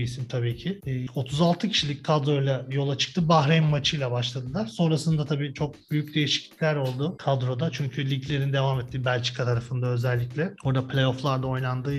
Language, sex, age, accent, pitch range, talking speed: Turkish, male, 40-59, native, 130-160 Hz, 140 wpm